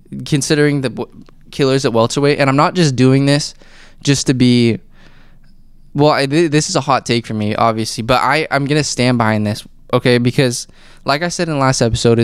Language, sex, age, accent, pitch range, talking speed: English, male, 20-39, American, 115-145 Hz, 205 wpm